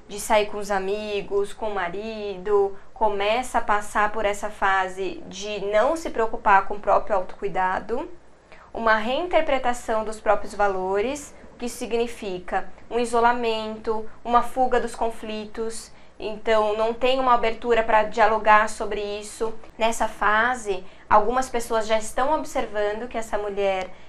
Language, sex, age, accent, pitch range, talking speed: Portuguese, female, 10-29, Brazilian, 205-245 Hz, 135 wpm